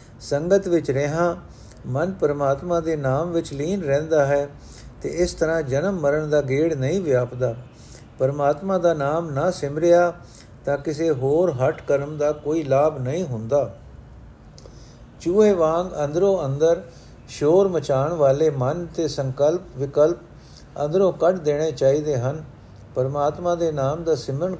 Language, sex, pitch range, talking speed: Punjabi, male, 140-175 Hz, 135 wpm